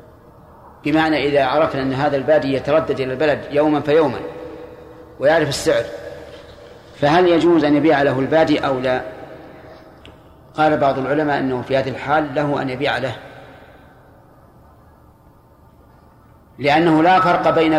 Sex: male